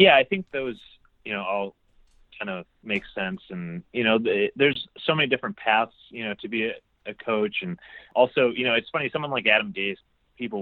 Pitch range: 95-135 Hz